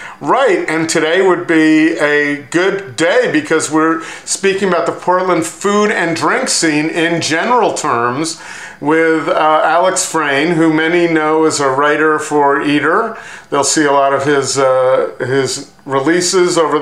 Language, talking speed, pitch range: English, 155 wpm, 135-160 Hz